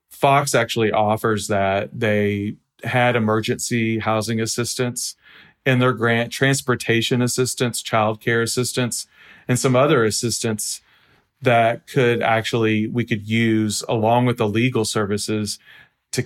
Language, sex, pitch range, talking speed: English, male, 105-125 Hz, 120 wpm